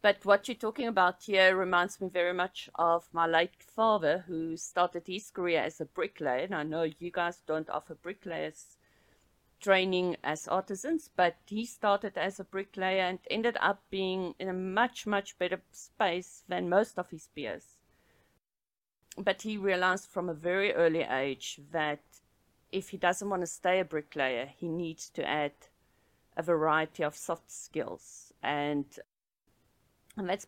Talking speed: 160 wpm